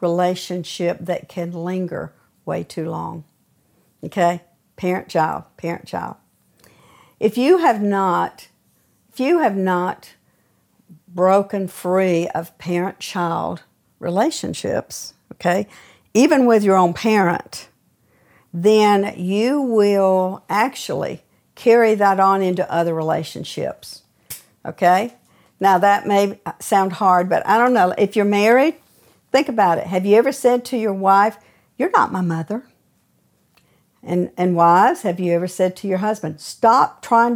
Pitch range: 180-220 Hz